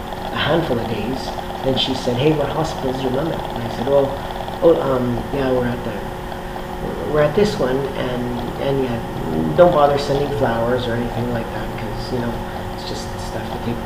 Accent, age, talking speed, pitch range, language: American, 40-59, 205 wpm, 110-140 Hz, English